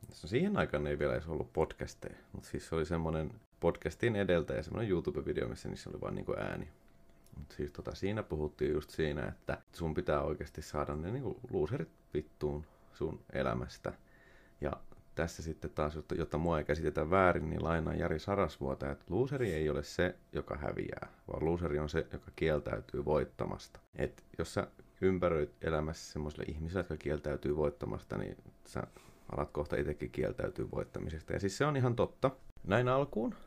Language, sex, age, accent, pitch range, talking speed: Finnish, male, 30-49, native, 75-95 Hz, 160 wpm